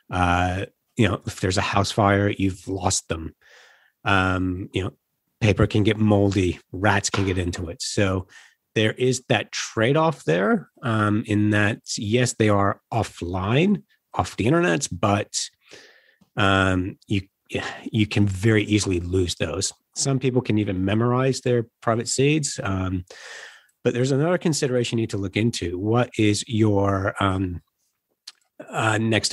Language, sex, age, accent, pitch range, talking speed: English, male, 30-49, American, 95-115 Hz, 150 wpm